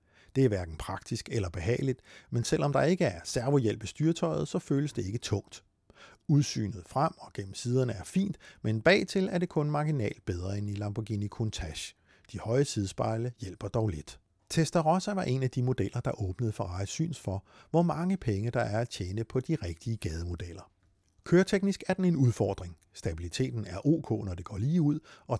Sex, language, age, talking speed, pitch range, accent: male, Danish, 60-79, 185 wpm, 100-145 Hz, native